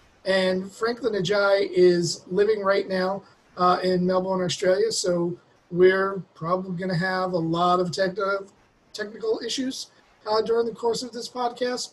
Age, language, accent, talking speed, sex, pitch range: 40-59, English, American, 150 wpm, male, 175-200 Hz